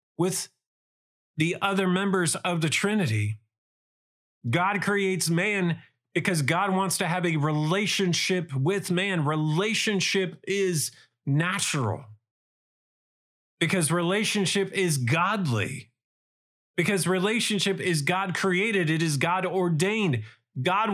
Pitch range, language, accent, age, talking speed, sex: 135-195 Hz, English, American, 30-49, 105 wpm, male